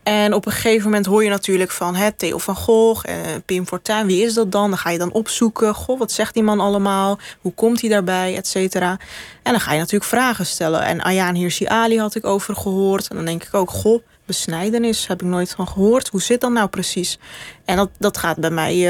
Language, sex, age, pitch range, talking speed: Dutch, female, 20-39, 185-220 Hz, 240 wpm